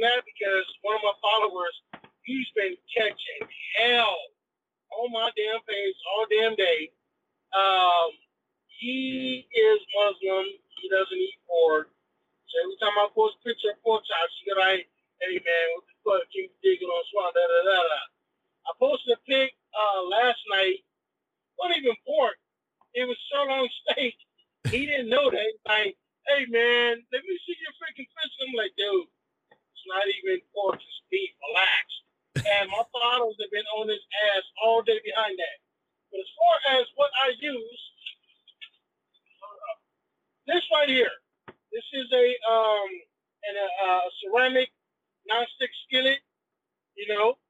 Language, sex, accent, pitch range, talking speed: English, male, American, 205-325 Hz, 155 wpm